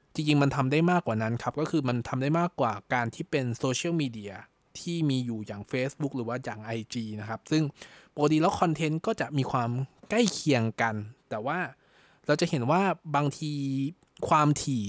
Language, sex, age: Thai, male, 20-39